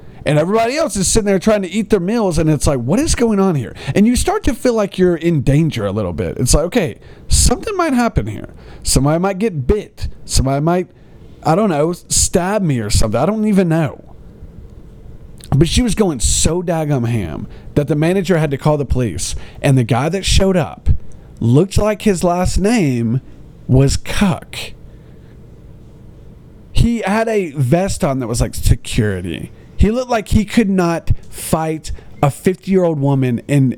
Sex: male